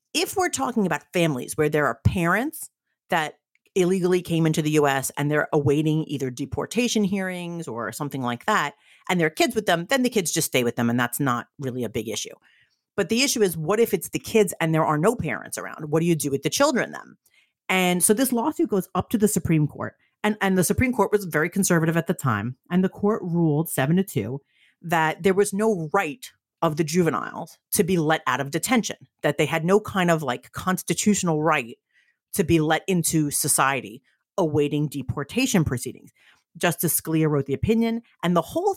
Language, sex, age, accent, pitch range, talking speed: English, female, 40-59, American, 150-205 Hz, 210 wpm